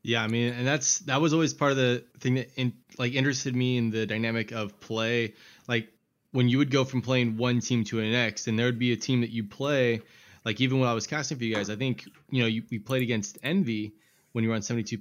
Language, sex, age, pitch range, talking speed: English, male, 20-39, 105-125 Hz, 270 wpm